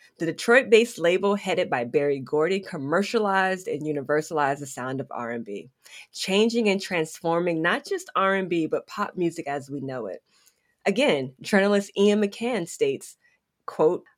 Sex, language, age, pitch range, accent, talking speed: female, English, 20-39, 155-200 Hz, American, 140 wpm